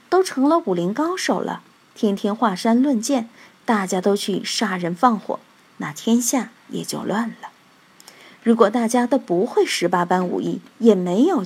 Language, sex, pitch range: Chinese, female, 195-265 Hz